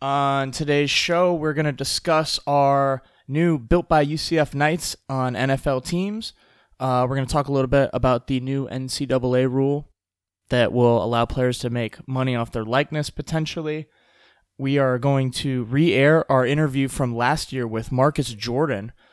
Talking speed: 165 wpm